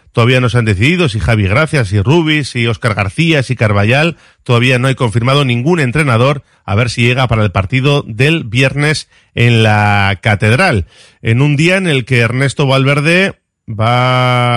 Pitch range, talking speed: 110-145 Hz, 175 wpm